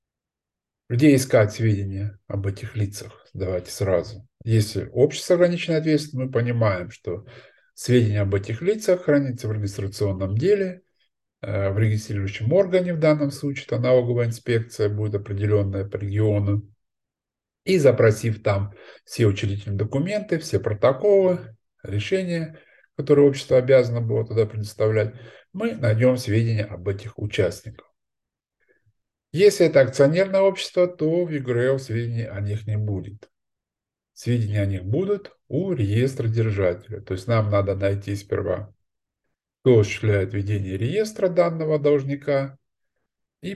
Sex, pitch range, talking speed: male, 105-140 Hz, 125 wpm